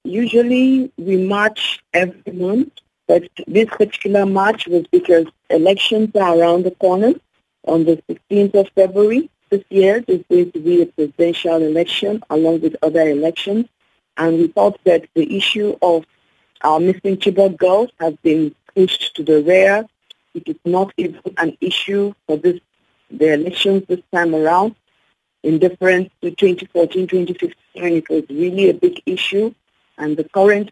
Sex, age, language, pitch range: female, 50-69, English, 165-200 Hz